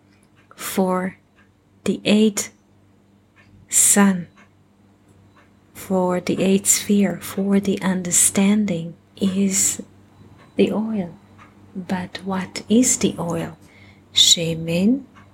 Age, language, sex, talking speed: 30-49, English, female, 80 wpm